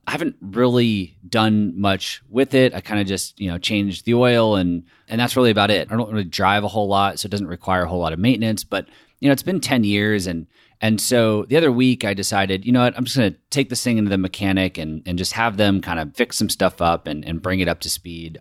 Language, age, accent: English, 30-49, American